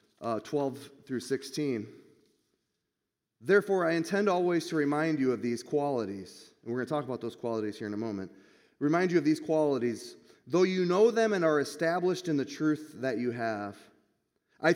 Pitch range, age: 140-195 Hz, 30-49